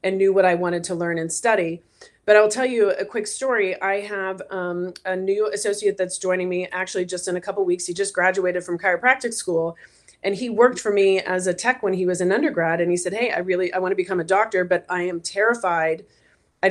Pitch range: 175-200 Hz